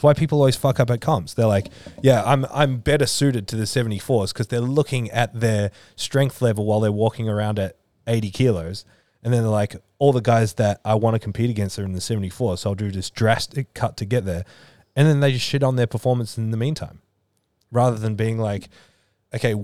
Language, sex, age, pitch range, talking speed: English, male, 20-39, 100-120 Hz, 225 wpm